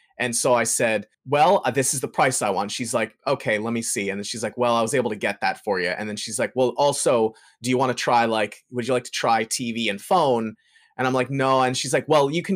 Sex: male